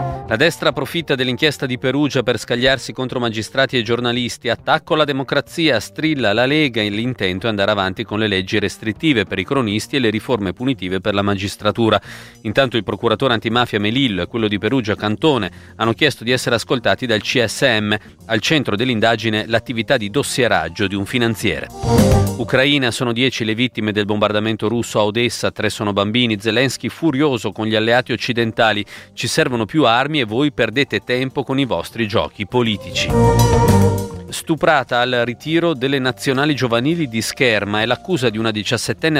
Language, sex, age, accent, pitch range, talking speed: Italian, male, 40-59, native, 105-135 Hz, 165 wpm